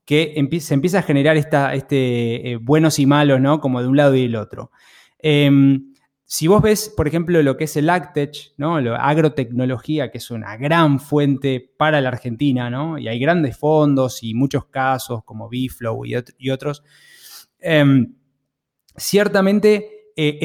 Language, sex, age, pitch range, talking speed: Spanish, male, 20-39, 125-160 Hz, 170 wpm